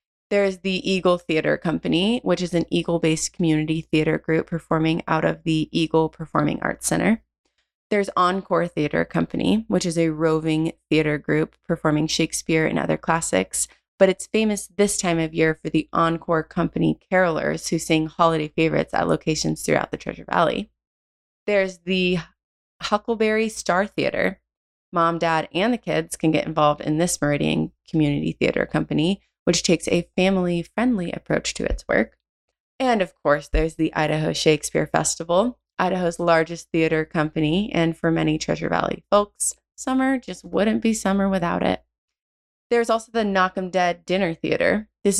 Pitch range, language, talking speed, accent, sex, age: 155-185 Hz, English, 155 wpm, American, female, 20-39